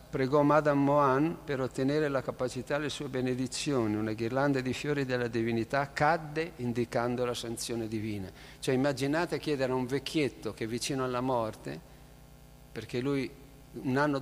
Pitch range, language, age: 120-145 Hz, Italian, 50-69